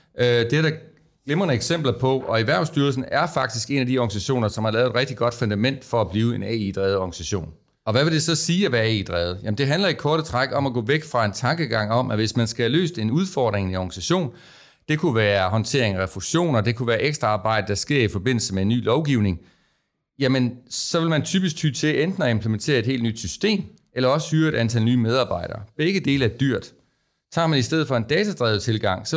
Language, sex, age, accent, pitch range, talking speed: Danish, male, 30-49, native, 110-150 Hz, 235 wpm